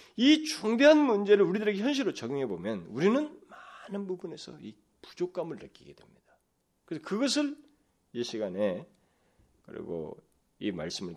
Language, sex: Korean, male